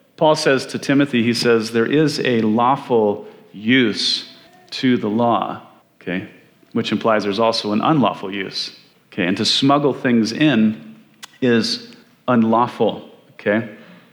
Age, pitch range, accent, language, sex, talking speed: 40-59, 105-130 Hz, American, English, male, 130 wpm